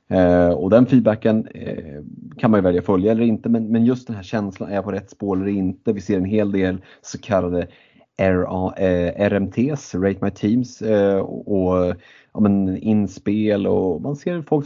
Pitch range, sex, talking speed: 95-115 Hz, male, 165 wpm